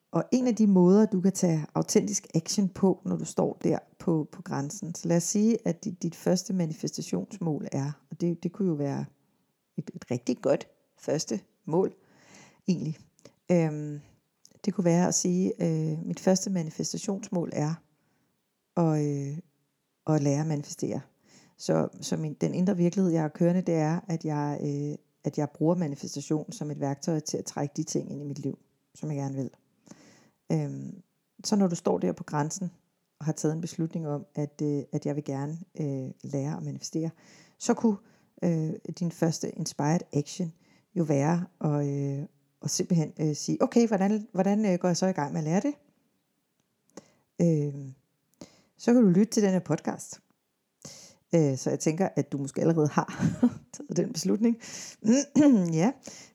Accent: native